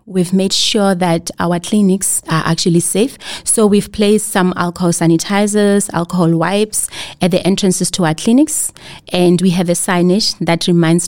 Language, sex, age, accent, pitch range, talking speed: English, female, 30-49, South African, 170-195 Hz, 160 wpm